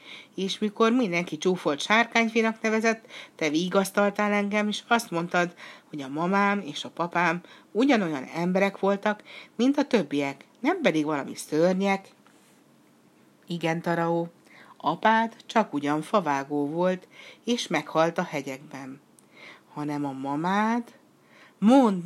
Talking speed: 115 wpm